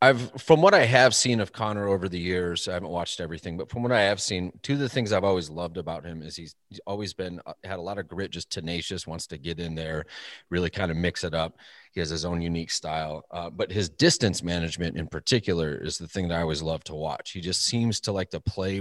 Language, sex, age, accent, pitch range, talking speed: English, male, 30-49, American, 85-110 Hz, 260 wpm